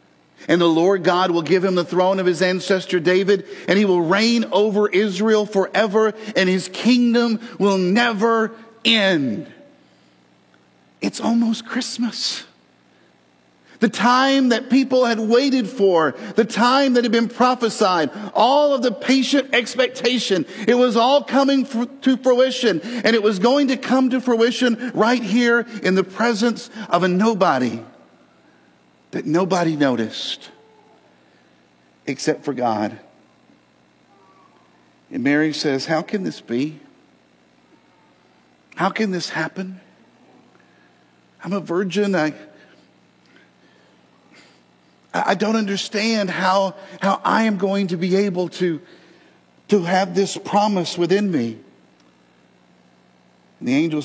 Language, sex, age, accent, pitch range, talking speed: English, male, 50-69, American, 155-230 Hz, 125 wpm